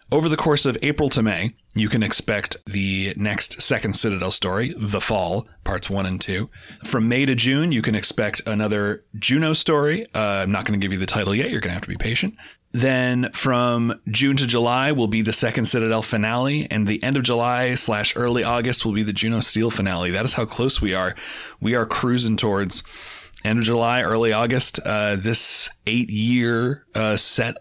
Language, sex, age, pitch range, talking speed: English, male, 30-49, 100-120 Hz, 205 wpm